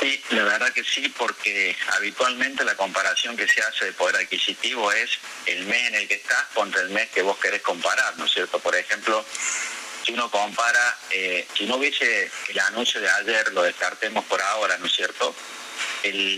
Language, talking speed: Spanish, 195 wpm